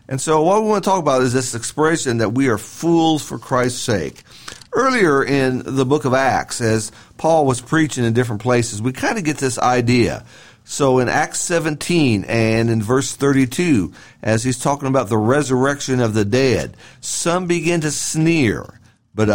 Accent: American